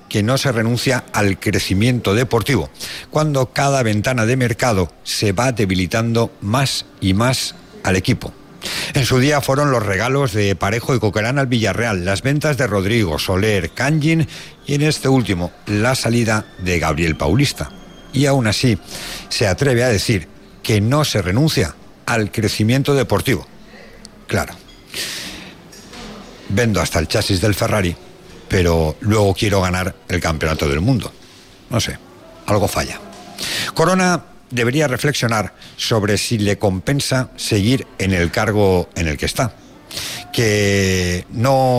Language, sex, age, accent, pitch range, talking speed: Spanish, male, 60-79, Spanish, 95-130 Hz, 140 wpm